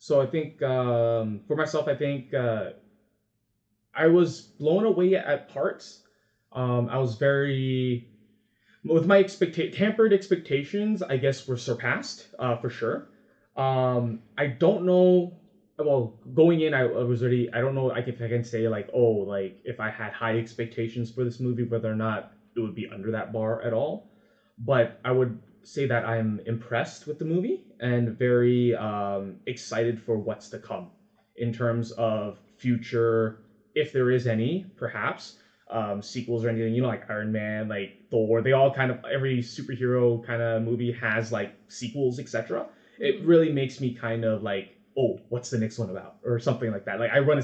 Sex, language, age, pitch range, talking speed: male, English, 20-39, 115-140 Hz, 180 wpm